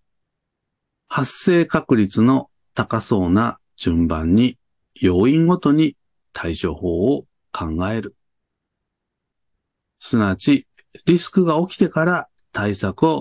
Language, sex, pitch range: Japanese, male, 95-155 Hz